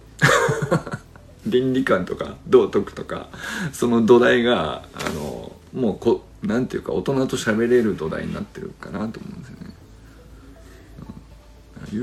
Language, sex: Japanese, male